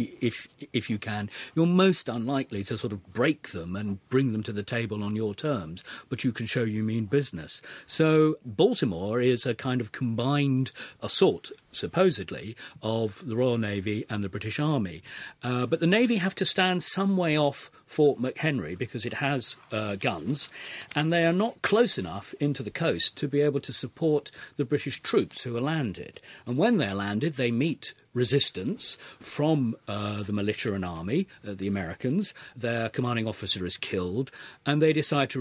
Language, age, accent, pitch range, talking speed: English, 40-59, British, 110-150 Hz, 180 wpm